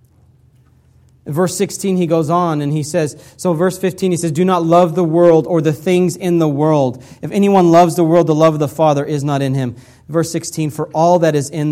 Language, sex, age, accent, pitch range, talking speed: English, male, 40-59, American, 135-180 Hz, 230 wpm